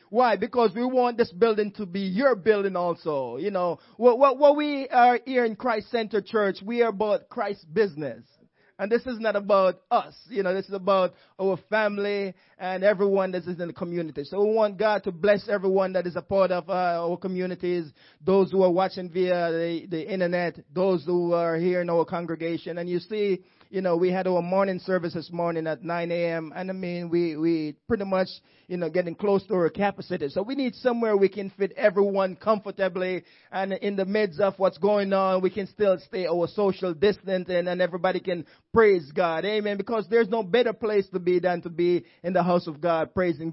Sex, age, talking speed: male, 20-39, 210 wpm